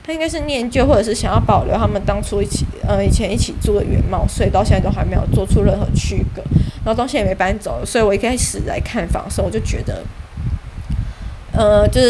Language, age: Chinese, 20-39